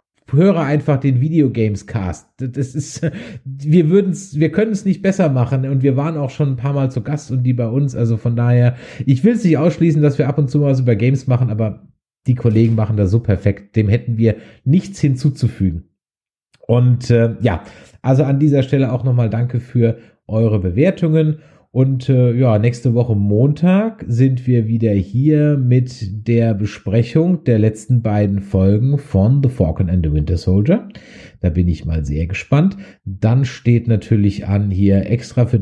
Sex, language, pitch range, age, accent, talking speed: male, German, 105-140 Hz, 30-49, German, 175 wpm